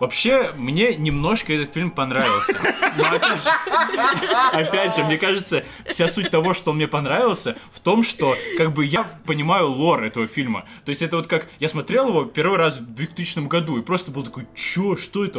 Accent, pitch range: native, 140-180 Hz